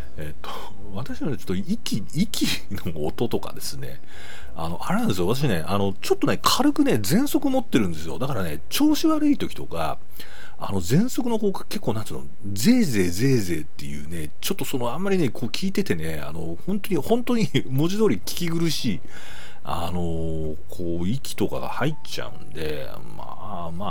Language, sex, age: Japanese, male, 40-59